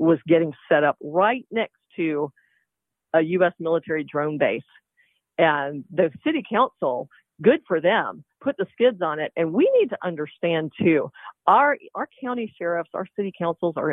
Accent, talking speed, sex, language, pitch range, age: American, 165 wpm, female, English, 155-195 Hz, 50-69